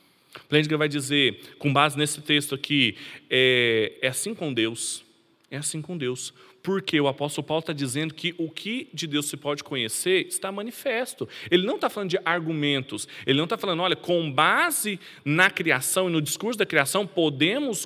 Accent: Brazilian